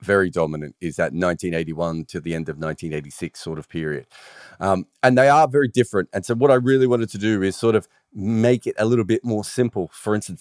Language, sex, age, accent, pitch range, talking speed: English, male, 30-49, Australian, 95-130 Hz, 225 wpm